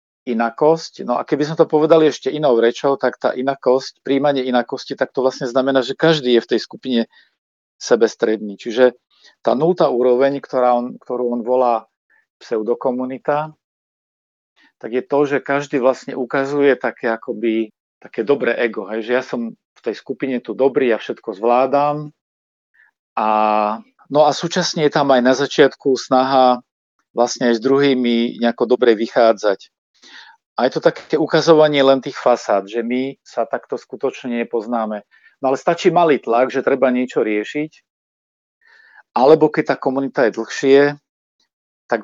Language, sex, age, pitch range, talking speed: Slovak, male, 40-59, 115-140 Hz, 155 wpm